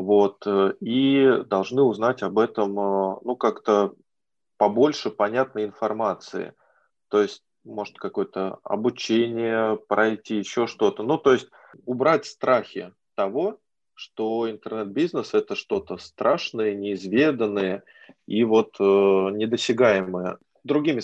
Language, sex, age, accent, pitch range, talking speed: Russian, male, 20-39, native, 105-125 Hz, 105 wpm